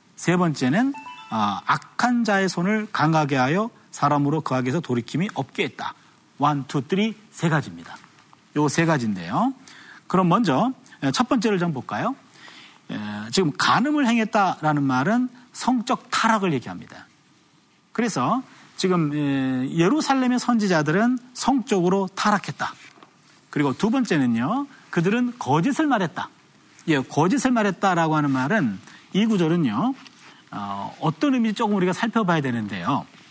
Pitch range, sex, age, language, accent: 155-235 Hz, male, 40-59, Korean, native